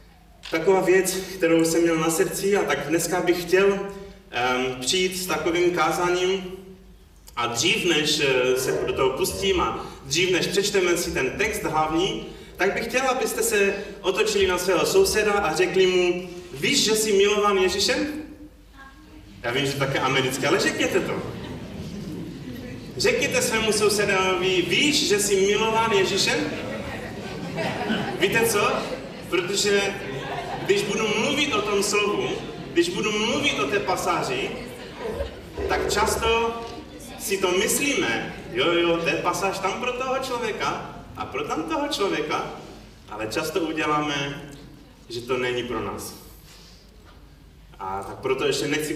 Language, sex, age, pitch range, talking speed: Czech, male, 30-49, 150-220 Hz, 140 wpm